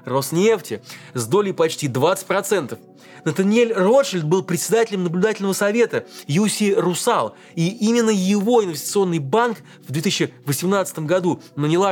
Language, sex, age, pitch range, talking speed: Russian, male, 20-39, 145-200 Hz, 110 wpm